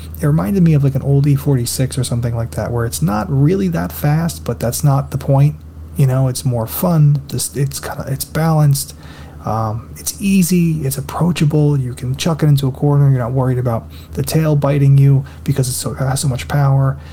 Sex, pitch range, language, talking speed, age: male, 110-145 Hz, English, 215 wpm, 30-49